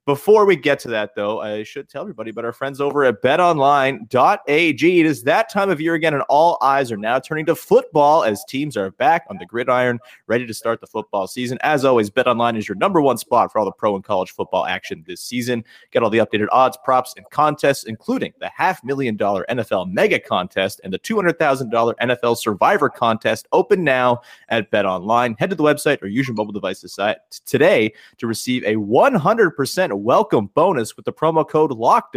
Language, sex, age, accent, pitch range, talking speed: English, male, 30-49, American, 115-155 Hz, 200 wpm